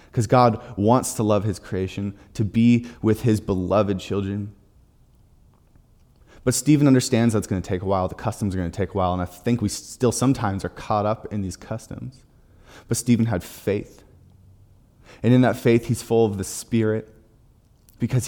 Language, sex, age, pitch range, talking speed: English, male, 20-39, 100-120 Hz, 185 wpm